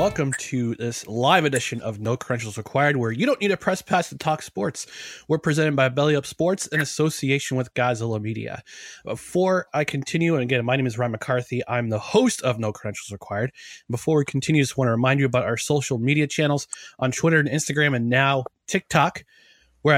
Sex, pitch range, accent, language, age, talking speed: male, 125-160 Hz, American, English, 20-39, 205 wpm